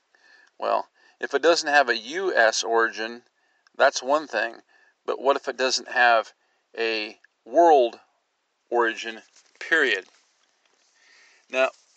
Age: 40-59